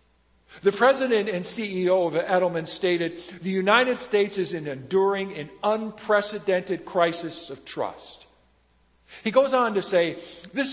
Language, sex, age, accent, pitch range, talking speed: English, male, 50-69, American, 150-200 Hz, 135 wpm